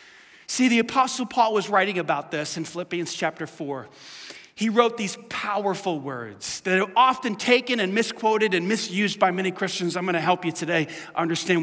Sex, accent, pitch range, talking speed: male, American, 180-275 Hz, 180 wpm